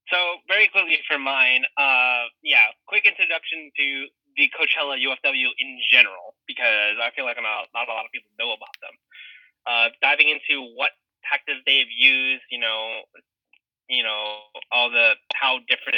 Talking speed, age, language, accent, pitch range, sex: 165 wpm, 20-39, English, American, 120-150 Hz, male